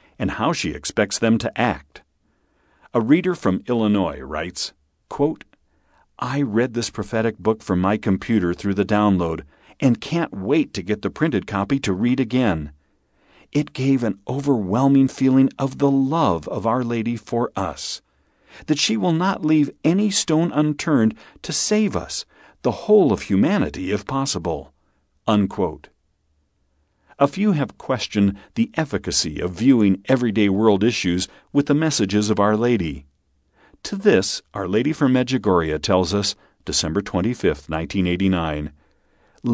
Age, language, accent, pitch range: 50-69, English, American, 90-130 Hz